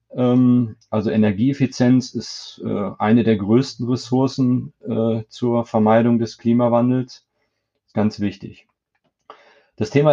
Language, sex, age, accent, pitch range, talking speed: German, male, 30-49, German, 105-125 Hz, 100 wpm